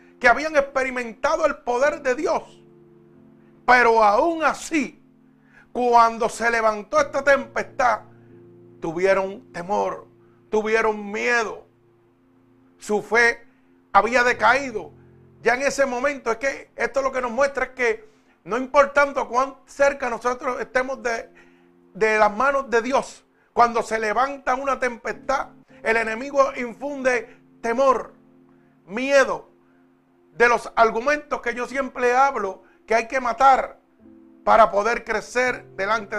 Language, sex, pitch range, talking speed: Spanish, male, 160-255 Hz, 125 wpm